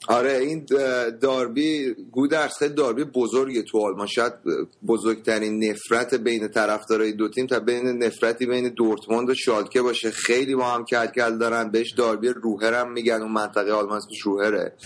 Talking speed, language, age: 140 wpm, Persian, 30-49